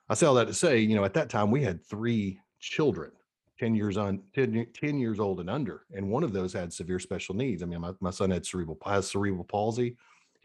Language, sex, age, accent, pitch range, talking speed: English, male, 40-59, American, 95-105 Hz, 245 wpm